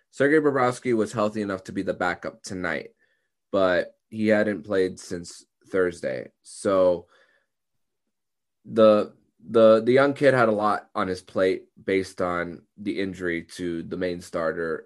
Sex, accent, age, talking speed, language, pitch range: male, American, 20-39, 145 wpm, English, 90-110 Hz